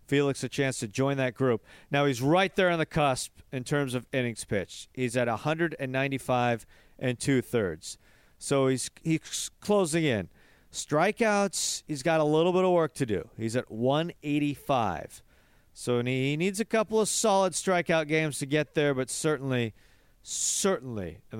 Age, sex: 40-59, male